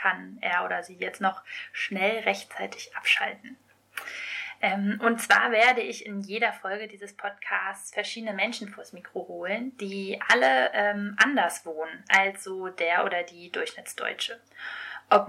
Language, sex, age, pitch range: English, female, 20-39, 185-215 Hz